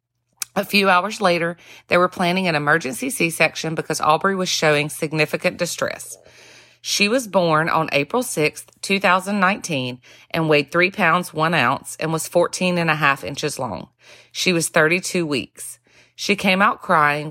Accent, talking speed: American, 155 wpm